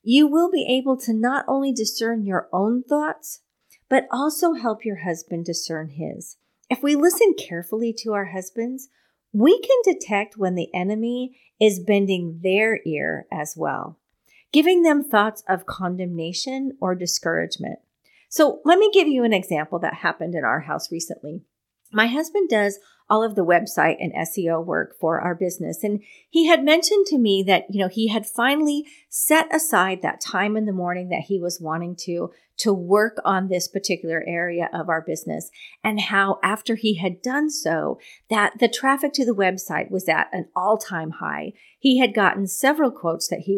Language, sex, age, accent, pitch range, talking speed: English, female, 40-59, American, 180-265 Hz, 175 wpm